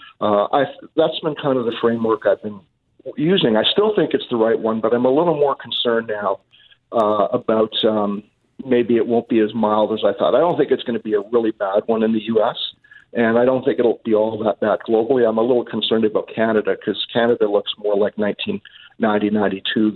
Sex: male